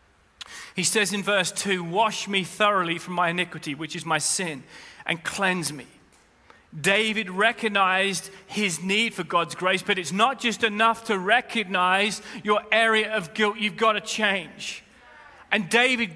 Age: 30-49